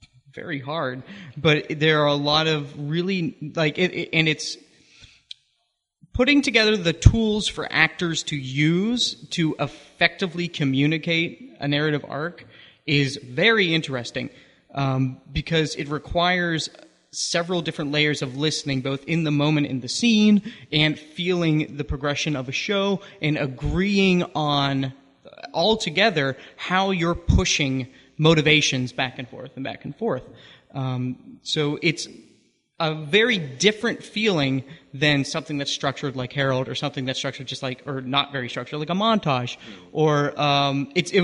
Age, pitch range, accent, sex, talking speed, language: 30-49, 140-170 Hz, American, male, 145 wpm, English